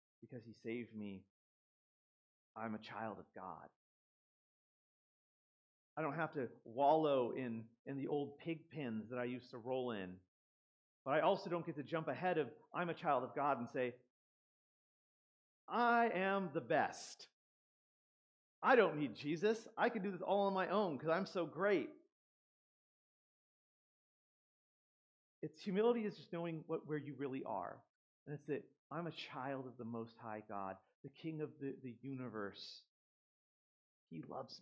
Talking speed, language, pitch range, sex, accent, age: 160 wpm, English, 120-180 Hz, male, American, 40-59